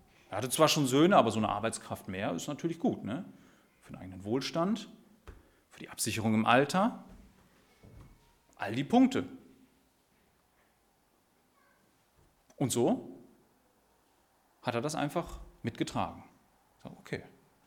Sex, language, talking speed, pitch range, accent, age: male, German, 110 wpm, 115-155 Hz, German, 40-59